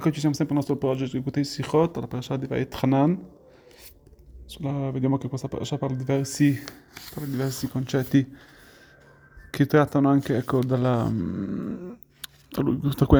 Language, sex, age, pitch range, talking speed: Italian, male, 30-49, 135-160 Hz, 155 wpm